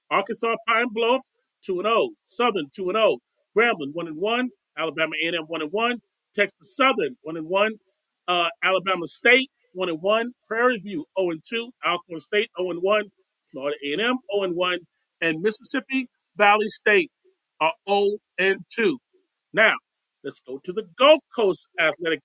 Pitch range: 180-250 Hz